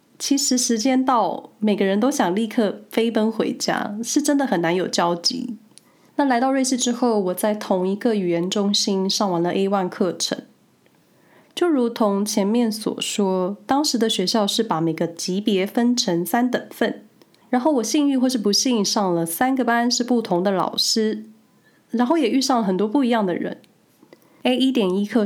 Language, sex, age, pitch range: Chinese, female, 20-39, 190-250 Hz